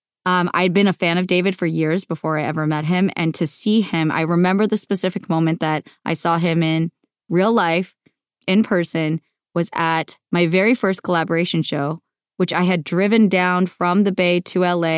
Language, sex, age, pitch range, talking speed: English, female, 20-39, 165-195 Hz, 195 wpm